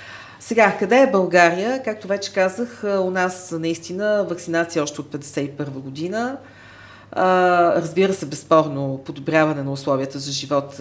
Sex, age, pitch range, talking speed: female, 40-59, 140-180 Hz, 130 wpm